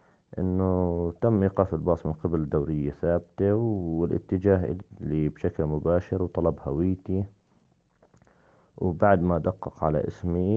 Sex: male